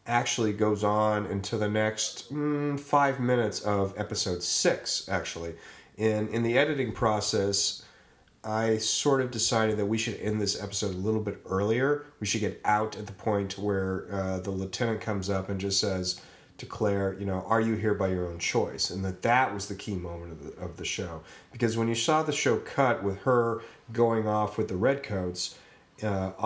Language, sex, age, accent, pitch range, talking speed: English, male, 30-49, American, 100-120 Hz, 195 wpm